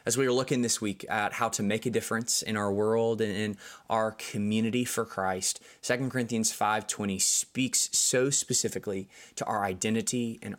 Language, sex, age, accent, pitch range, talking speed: English, male, 20-39, American, 105-130 Hz, 175 wpm